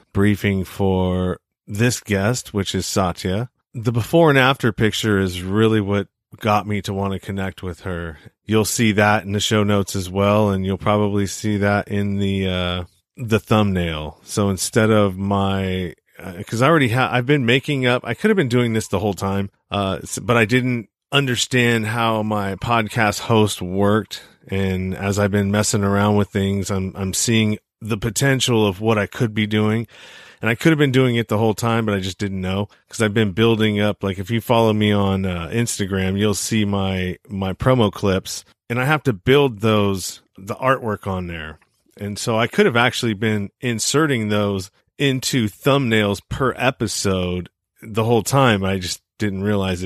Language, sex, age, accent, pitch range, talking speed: English, male, 30-49, American, 95-115 Hz, 190 wpm